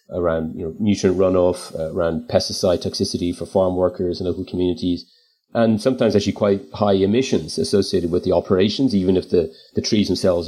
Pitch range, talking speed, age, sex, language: 90-105 Hz, 180 wpm, 30-49, male, English